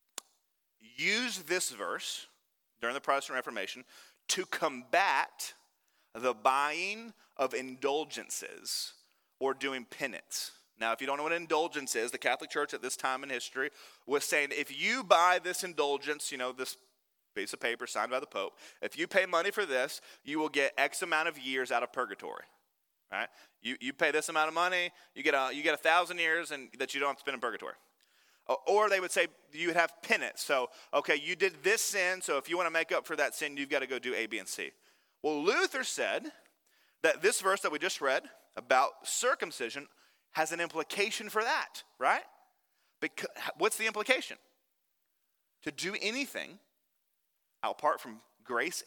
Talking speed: 185 wpm